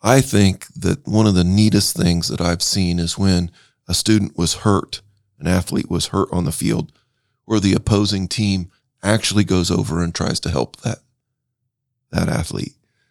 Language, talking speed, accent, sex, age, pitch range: English, 175 wpm, American, male, 40-59, 100-130 Hz